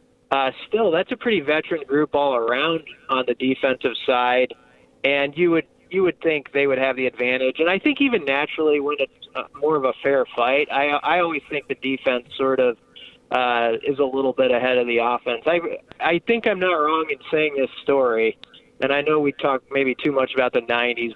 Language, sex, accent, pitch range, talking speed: English, male, American, 125-155 Hz, 210 wpm